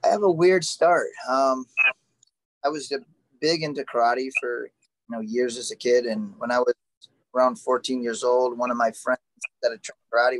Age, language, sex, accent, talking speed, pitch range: 20-39, English, male, American, 195 wpm, 120-140 Hz